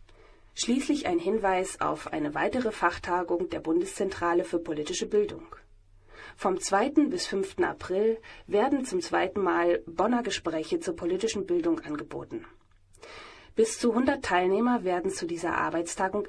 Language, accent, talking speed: German, German, 130 wpm